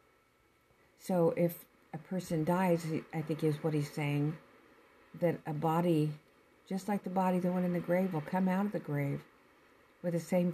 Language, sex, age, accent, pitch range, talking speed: English, female, 50-69, American, 155-185 Hz, 180 wpm